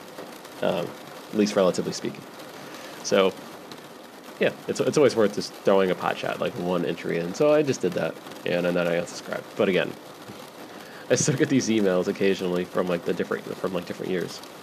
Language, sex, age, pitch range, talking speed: English, male, 20-39, 90-105 Hz, 185 wpm